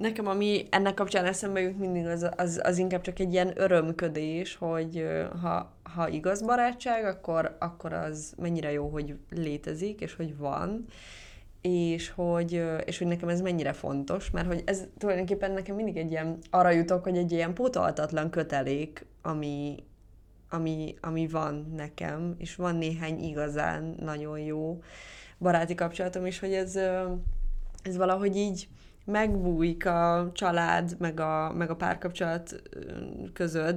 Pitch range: 160-190 Hz